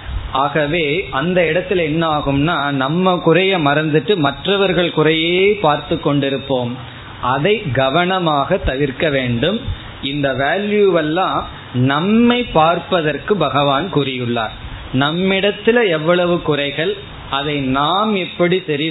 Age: 20-39